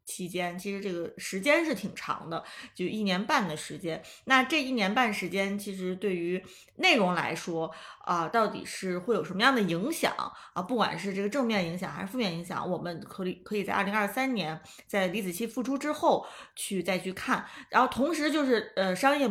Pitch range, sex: 180-230 Hz, female